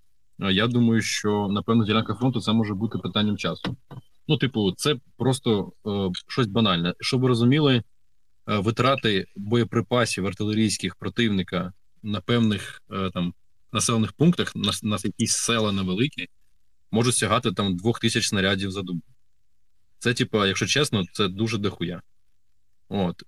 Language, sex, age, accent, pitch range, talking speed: Ukrainian, male, 20-39, native, 95-115 Hz, 140 wpm